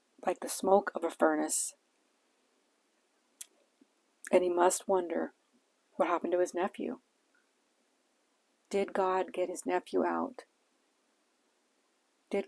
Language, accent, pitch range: English, American, 180-200 Hz